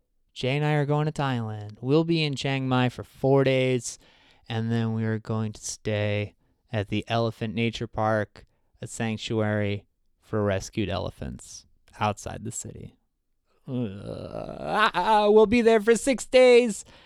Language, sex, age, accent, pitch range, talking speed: English, male, 20-39, American, 105-140 Hz, 150 wpm